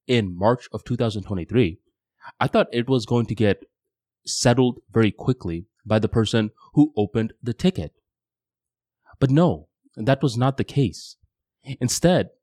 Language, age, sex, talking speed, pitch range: English, 20-39, male, 140 wpm, 105-140 Hz